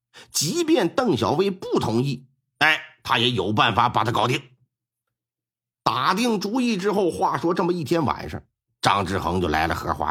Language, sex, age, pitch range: Chinese, male, 50-69, 120-185 Hz